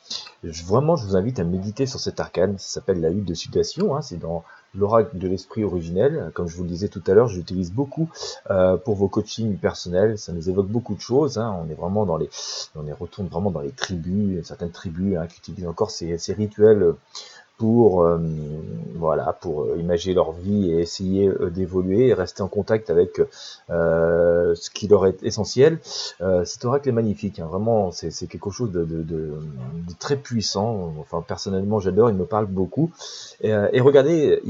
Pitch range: 85-105 Hz